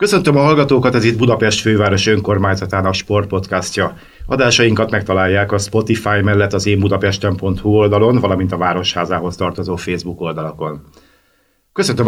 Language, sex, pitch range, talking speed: Hungarian, male, 95-110 Hz, 130 wpm